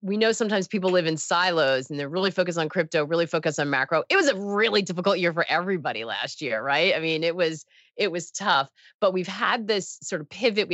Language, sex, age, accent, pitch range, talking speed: English, female, 30-49, American, 160-200 Hz, 240 wpm